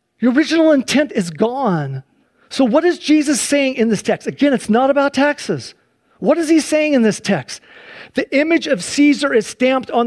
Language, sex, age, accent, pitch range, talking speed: English, male, 40-59, American, 215-295 Hz, 190 wpm